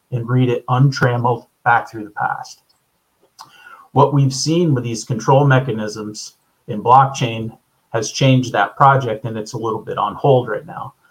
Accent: American